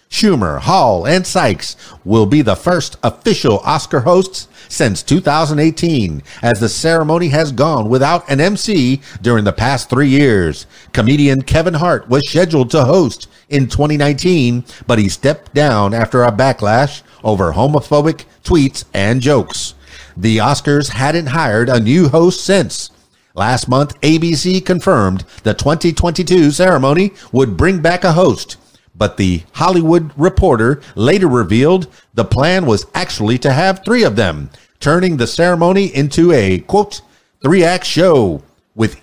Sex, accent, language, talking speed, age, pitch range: male, American, English, 140 wpm, 50-69, 110-165 Hz